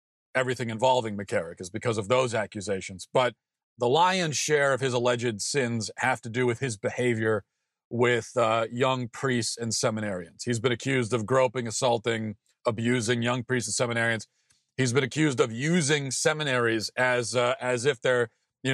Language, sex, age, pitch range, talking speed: English, male, 40-59, 115-135 Hz, 165 wpm